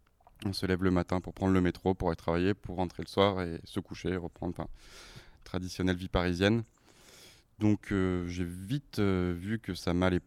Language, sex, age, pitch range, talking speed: French, male, 20-39, 90-110 Hz, 200 wpm